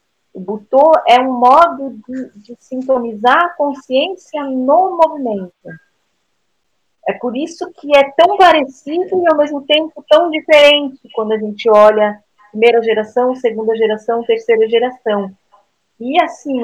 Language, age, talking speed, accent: Portuguese, 40-59, 135 wpm, Brazilian